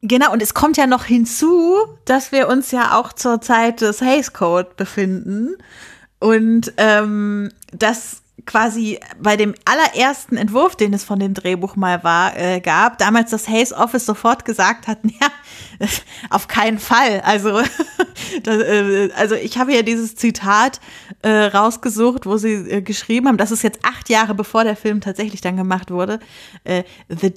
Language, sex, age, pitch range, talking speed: German, female, 30-49, 195-235 Hz, 165 wpm